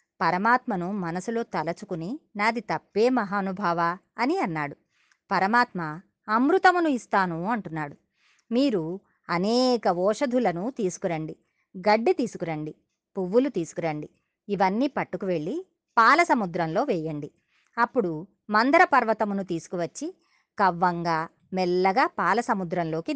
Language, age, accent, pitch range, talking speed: Telugu, 30-49, native, 175-250 Hz, 85 wpm